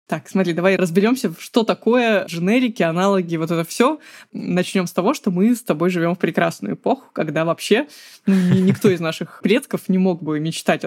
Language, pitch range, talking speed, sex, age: Russian, 175-220 Hz, 180 wpm, female, 20-39